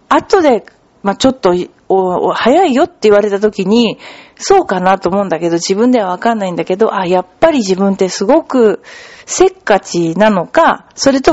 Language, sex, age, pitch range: Japanese, female, 40-59, 195-300 Hz